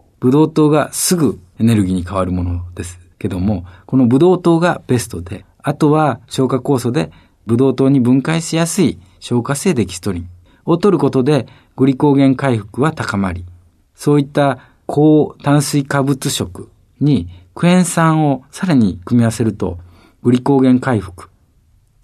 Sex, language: male, Japanese